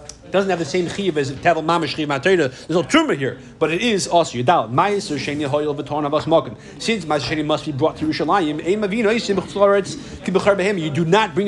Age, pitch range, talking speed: 30-49, 165-225 Hz, 230 wpm